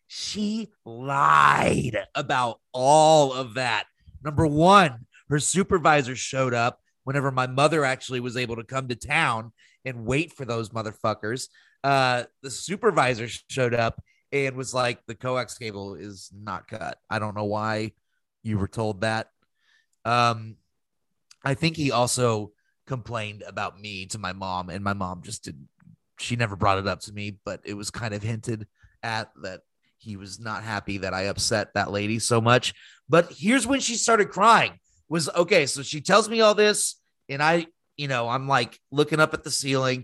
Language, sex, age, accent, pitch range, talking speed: English, male, 30-49, American, 110-155 Hz, 175 wpm